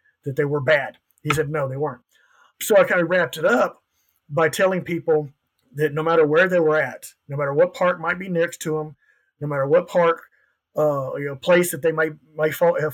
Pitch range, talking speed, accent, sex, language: 145-175 Hz, 225 wpm, American, male, English